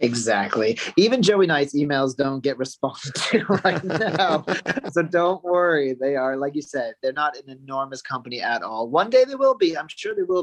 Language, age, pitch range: English, 30-49, 120-140 Hz